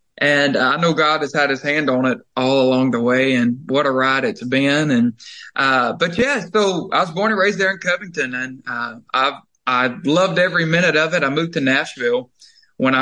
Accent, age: American, 20-39